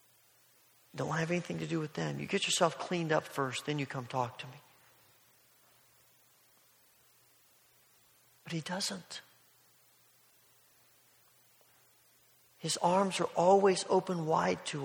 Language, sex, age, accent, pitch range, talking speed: English, male, 50-69, American, 170-205 Hz, 125 wpm